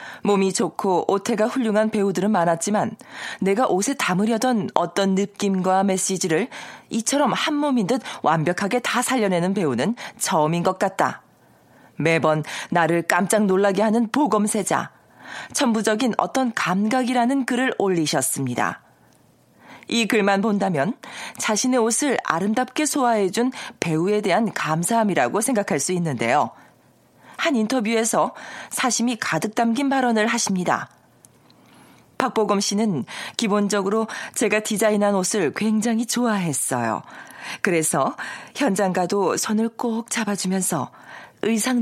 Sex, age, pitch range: female, 40-59, 185-235 Hz